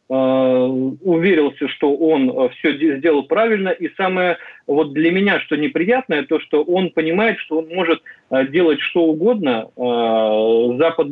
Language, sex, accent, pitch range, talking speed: Russian, male, native, 130-170 Hz, 130 wpm